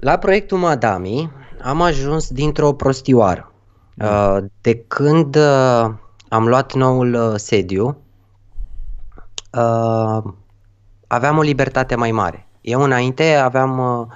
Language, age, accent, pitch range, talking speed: Romanian, 20-39, native, 115-160 Hz, 90 wpm